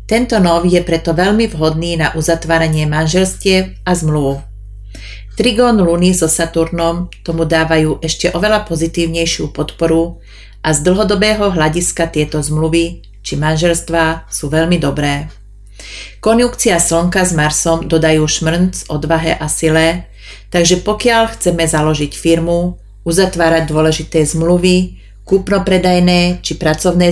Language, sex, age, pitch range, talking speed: Slovak, female, 30-49, 155-180 Hz, 115 wpm